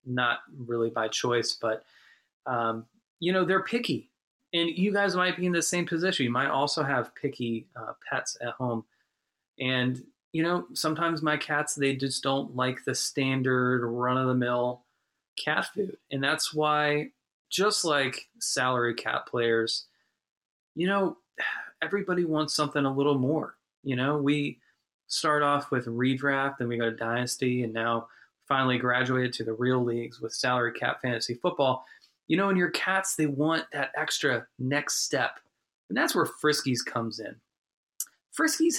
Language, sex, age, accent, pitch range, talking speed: English, male, 20-39, American, 125-170 Hz, 160 wpm